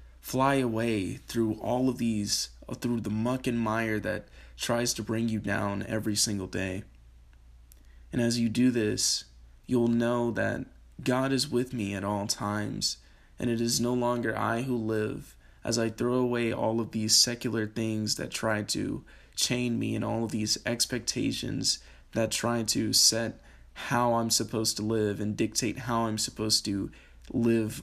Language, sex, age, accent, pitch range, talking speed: English, male, 20-39, American, 100-120 Hz, 170 wpm